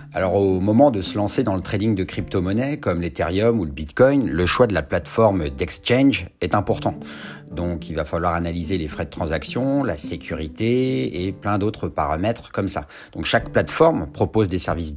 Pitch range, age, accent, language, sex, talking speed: 85-110 Hz, 40-59, French, French, male, 190 wpm